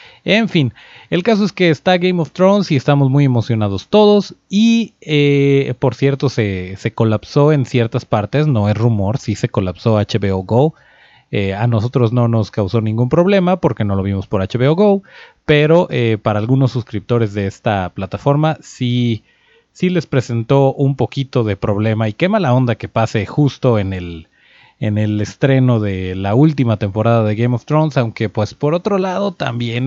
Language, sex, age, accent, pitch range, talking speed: Spanish, male, 30-49, Mexican, 105-145 Hz, 180 wpm